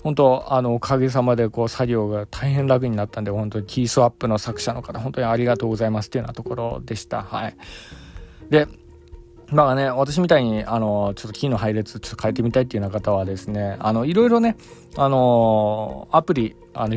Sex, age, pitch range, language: male, 20-39, 110-140 Hz, Japanese